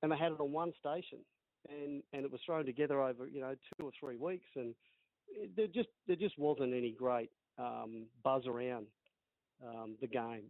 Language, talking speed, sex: English, 200 wpm, male